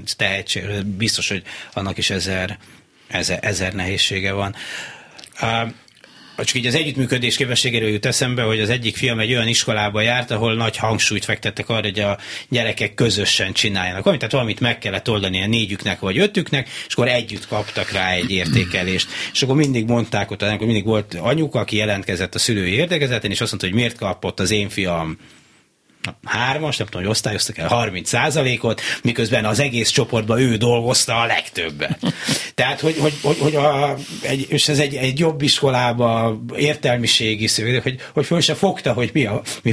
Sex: male